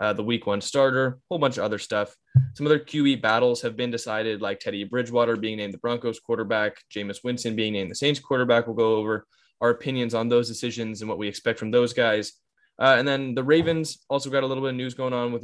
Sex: male